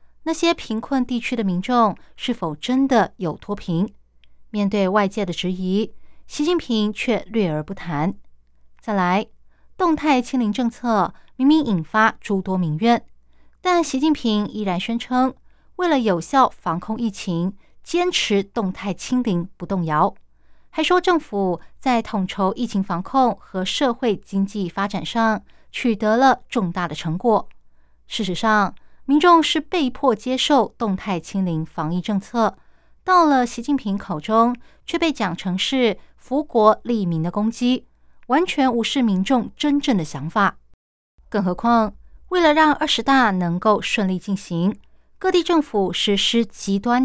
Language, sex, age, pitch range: Chinese, female, 20-39, 185-255 Hz